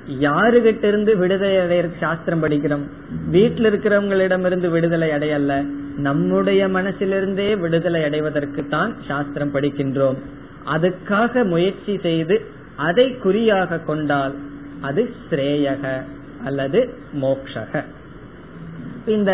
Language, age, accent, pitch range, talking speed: Tamil, 20-39, native, 150-200 Hz, 80 wpm